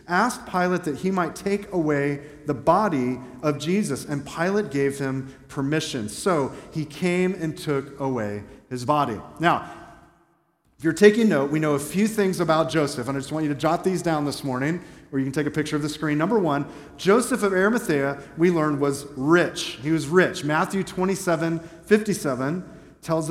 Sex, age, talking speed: male, 40-59, 185 wpm